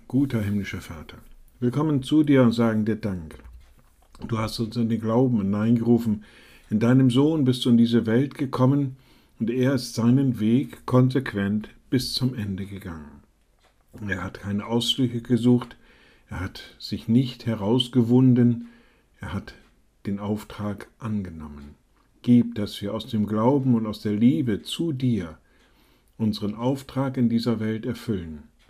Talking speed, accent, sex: 145 wpm, German, male